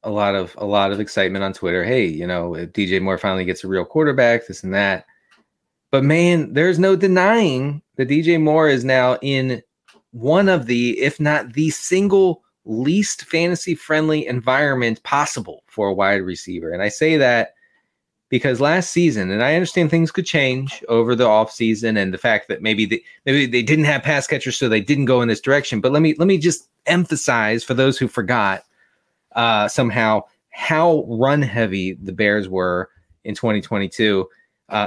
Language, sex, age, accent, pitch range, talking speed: English, male, 30-49, American, 105-155 Hz, 180 wpm